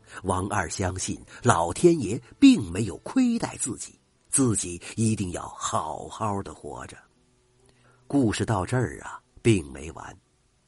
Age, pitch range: 50-69, 90-150 Hz